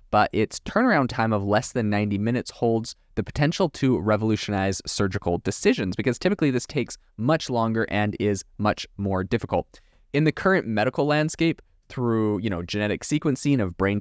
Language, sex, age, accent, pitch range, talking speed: English, male, 20-39, American, 95-130 Hz, 165 wpm